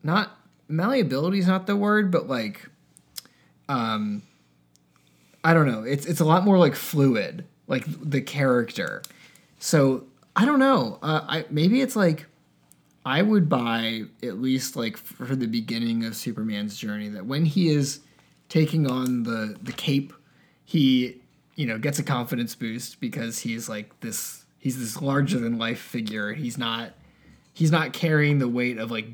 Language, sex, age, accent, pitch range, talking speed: English, male, 20-39, American, 115-155 Hz, 165 wpm